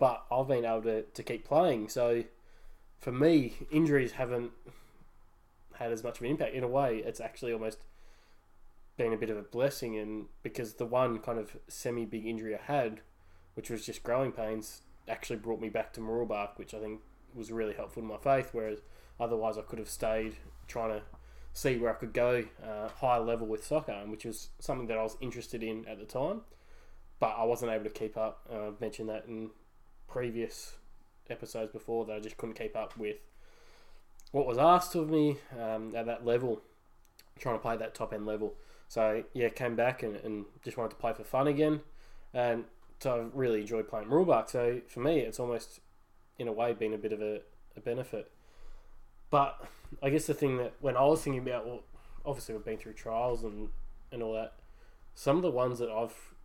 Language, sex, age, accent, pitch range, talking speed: English, male, 20-39, Australian, 110-120 Hz, 200 wpm